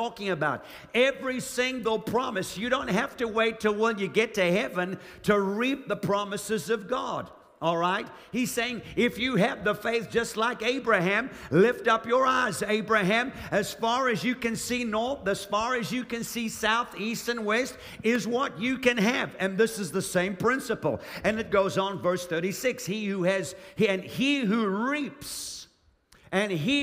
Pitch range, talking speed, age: 190-235 Hz, 180 wpm, 50-69